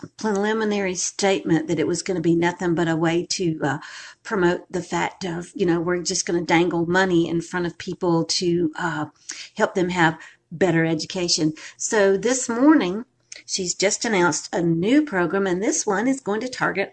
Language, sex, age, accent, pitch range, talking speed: English, female, 50-69, American, 170-220 Hz, 185 wpm